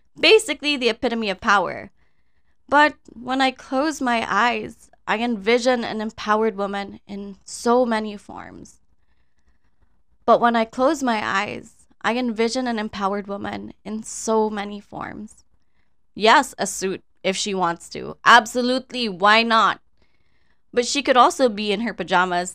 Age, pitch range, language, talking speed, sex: 20-39, 195-240 Hz, Filipino, 140 wpm, female